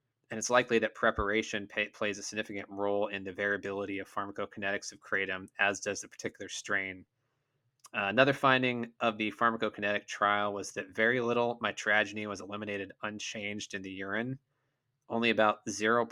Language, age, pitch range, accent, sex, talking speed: English, 20-39, 105-130 Hz, American, male, 160 wpm